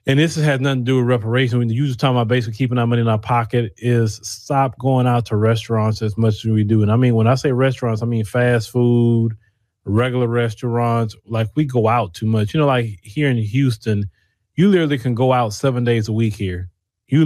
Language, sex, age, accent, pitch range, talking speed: English, male, 30-49, American, 115-160 Hz, 235 wpm